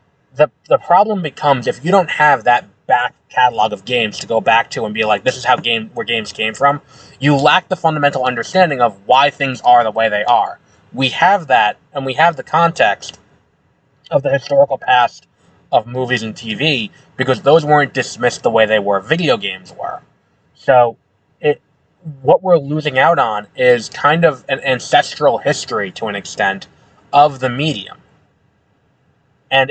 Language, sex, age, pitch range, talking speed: English, male, 20-39, 120-150 Hz, 180 wpm